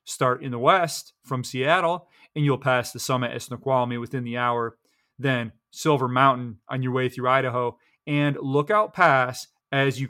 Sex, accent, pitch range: male, American, 125-150 Hz